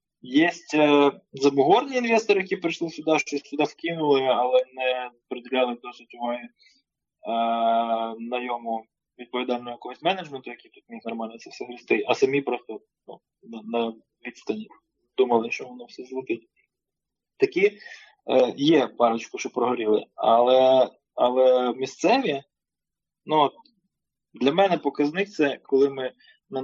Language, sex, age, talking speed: Ukrainian, male, 20-39, 130 wpm